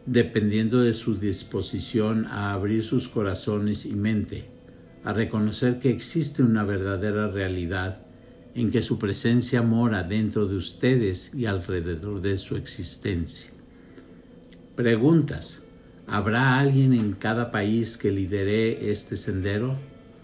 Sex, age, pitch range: male, 50-69, 100-120 Hz